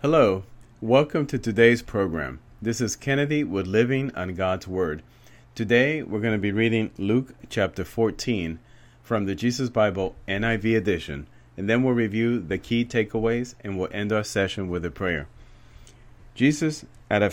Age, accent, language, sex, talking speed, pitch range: 40-59, American, English, male, 160 wpm, 95-120 Hz